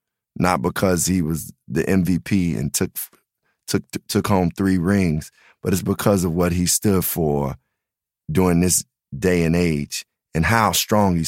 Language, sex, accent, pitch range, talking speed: English, male, American, 85-100 Hz, 165 wpm